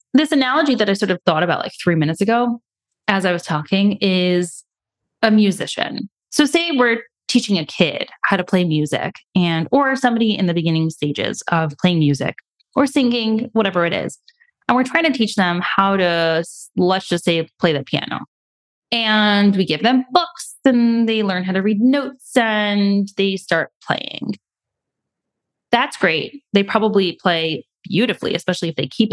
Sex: female